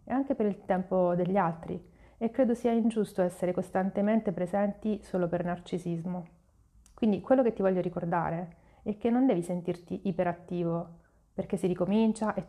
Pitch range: 175-210 Hz